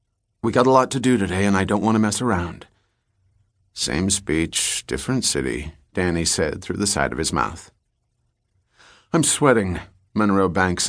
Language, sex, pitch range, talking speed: English, male, 85-110 Hz, 165 wpm